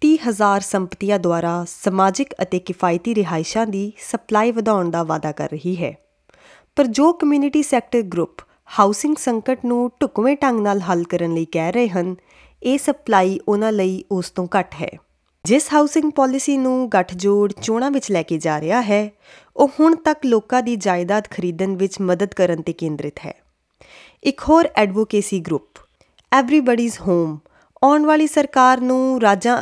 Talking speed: 135 wpm